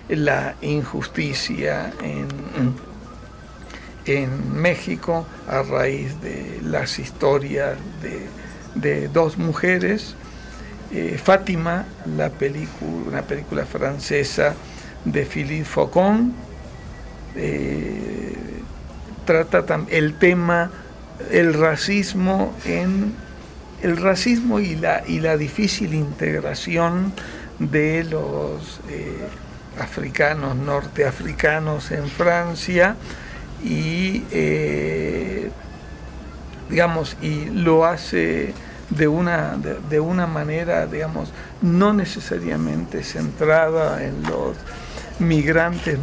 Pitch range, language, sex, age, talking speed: 125-180 Hz, Spanish, male, 60-79, 85 wpm